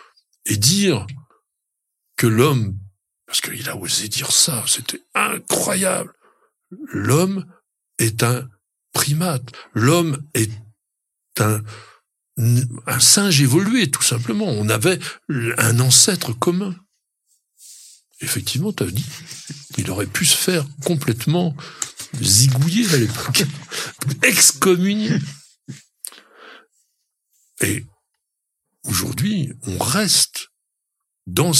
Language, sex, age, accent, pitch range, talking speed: French, male, 60-79, French, 115-160 Hz, 90 wpm